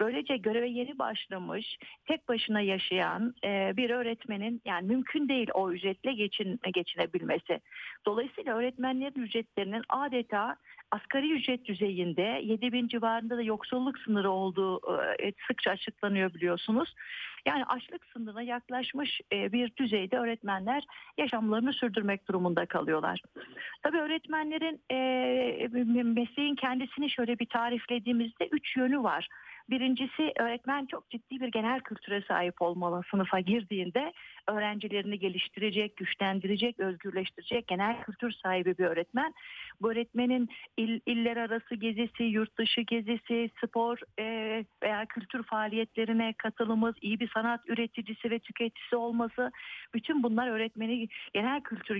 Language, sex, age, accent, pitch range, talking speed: Turkish, female, 50-69, native, 210-255 Hz, 115 wpm